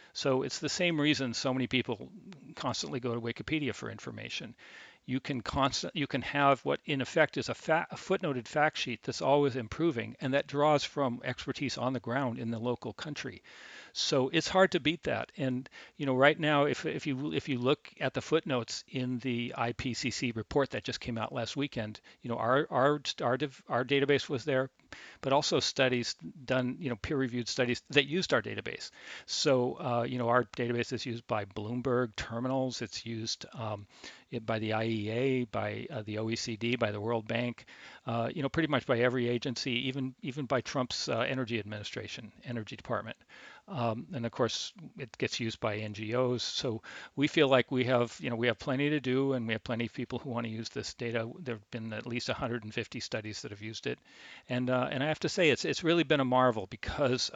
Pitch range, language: 115-135 Hz, English